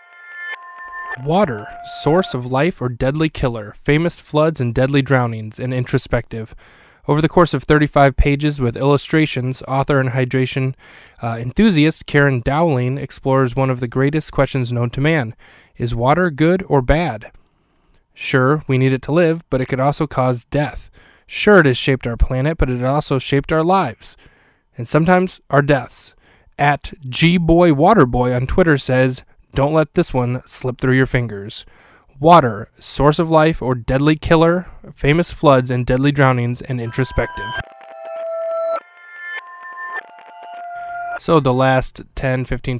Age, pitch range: 20-39, 125-155 Hz